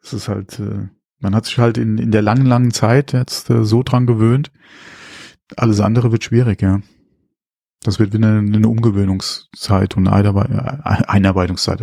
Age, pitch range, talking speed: 30-49, 95-115 Hz, 155 wpm